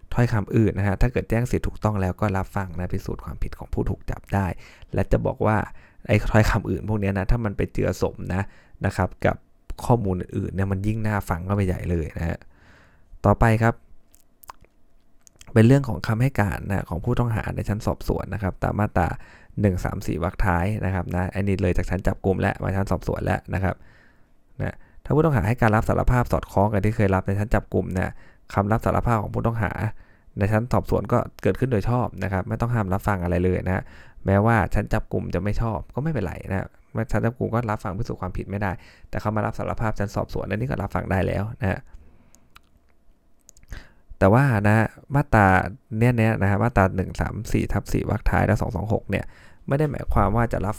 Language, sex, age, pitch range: Thai, male, 20-39, 95-110 Hz